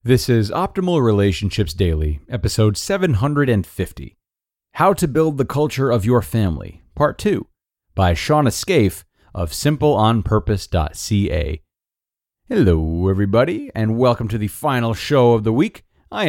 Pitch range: 90-120 Hz